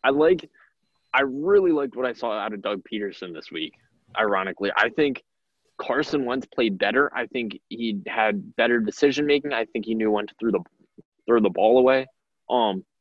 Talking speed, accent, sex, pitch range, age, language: 190 wpm, American, male, 110-140 Hz, 20-39, English